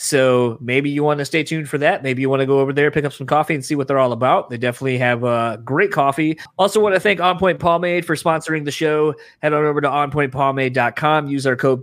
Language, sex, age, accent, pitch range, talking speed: English, male, 20-39, American, 125-150 Hz, 260 wpm